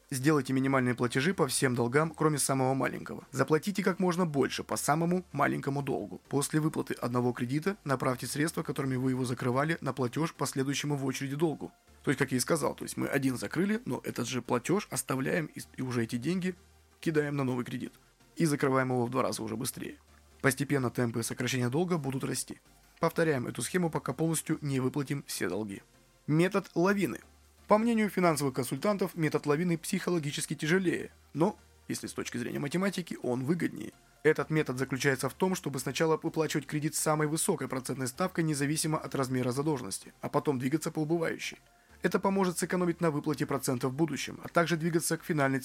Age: 20-39